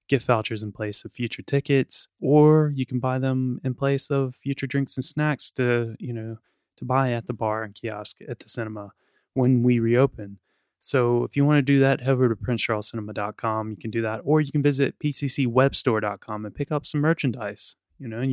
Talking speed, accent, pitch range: 205 wpm, American, 110-140 Hz